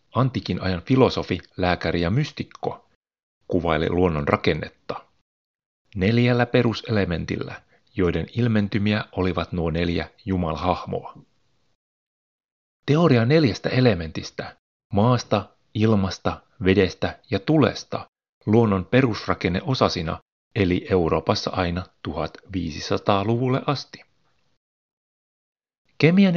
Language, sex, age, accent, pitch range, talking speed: Finnish, male, 30-49, native, 90-120 Hz, 75 wpm